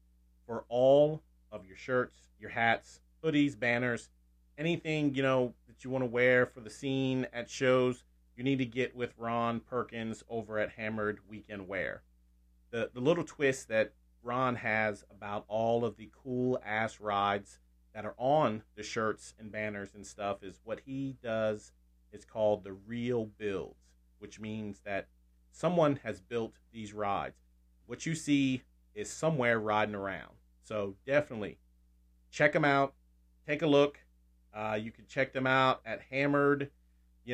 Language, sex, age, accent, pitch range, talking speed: English, male, 30-49, American, 90-125 Hz, 155 wpm